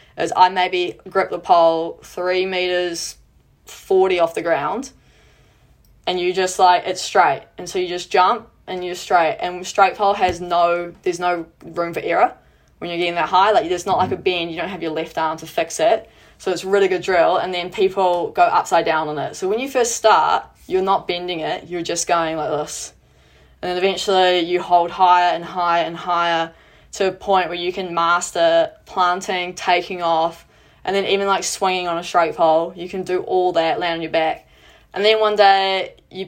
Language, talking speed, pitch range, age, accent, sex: English, 210 wpm, 170-195 Hz, 20-39, Australian, female